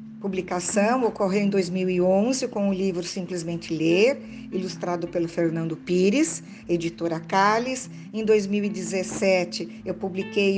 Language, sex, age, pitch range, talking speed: Portuguese, female, 50-69, 190-220 Hz, 115 wpm